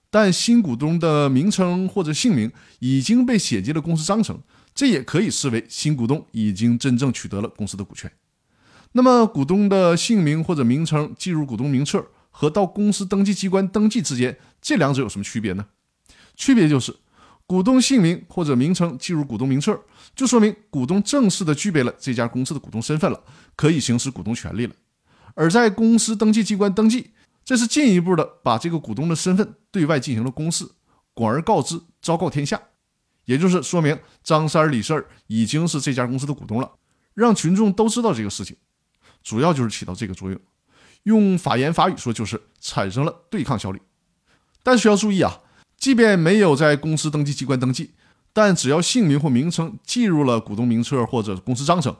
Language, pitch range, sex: Chinese, 120-190 Hz, male